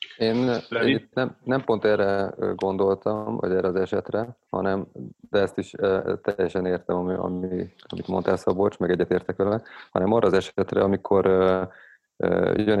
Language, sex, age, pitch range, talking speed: Hungarian, male, 30-49, 85-100 Hz, 130 wpm